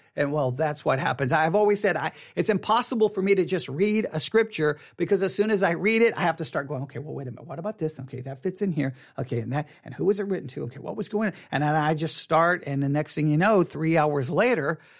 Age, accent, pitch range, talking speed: 50-69, American, 150-205 Hz, 290 wpm